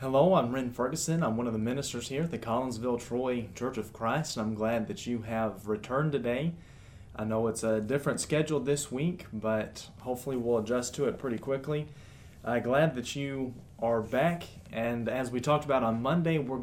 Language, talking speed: English, 195 wpm